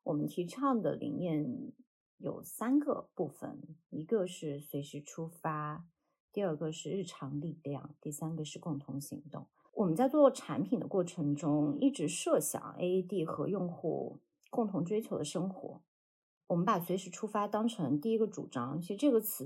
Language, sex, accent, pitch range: Chinese, female, native, 150-235 Hz